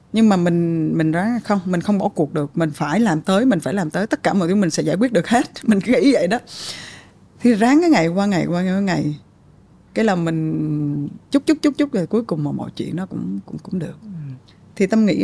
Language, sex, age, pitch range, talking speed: Vietnamese, female, 20-39, 155-215 Hz, 245 wpm